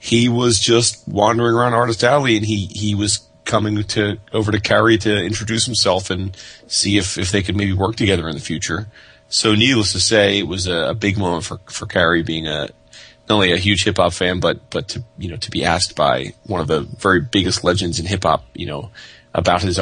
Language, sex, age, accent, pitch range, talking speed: English, male, 30-49, American, 90-110 Hz, 225 wpm